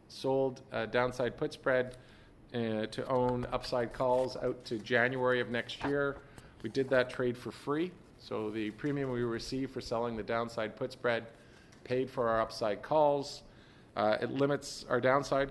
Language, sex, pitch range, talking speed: English, male, 115-135 Hz, 165 wpm